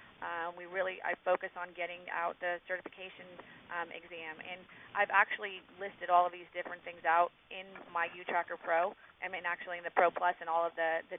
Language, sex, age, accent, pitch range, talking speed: English, female, 30-49, American, 170-185 Hz, 210 wpm